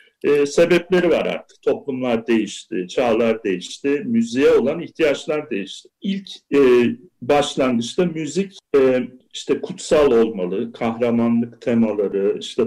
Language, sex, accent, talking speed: Turkish, male, native, 110 wpm